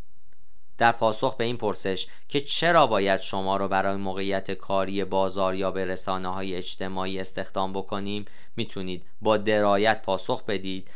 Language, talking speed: Persian, 135 wpm